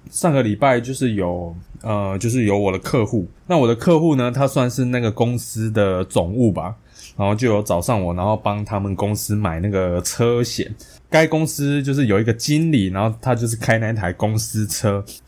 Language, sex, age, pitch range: Chinese, male, 20-39, 100-130 Hz